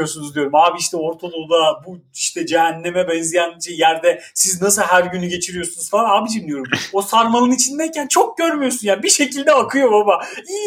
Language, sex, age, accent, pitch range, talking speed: Turkish, male, 40-59, native, 175-260 Hz, 155 wpm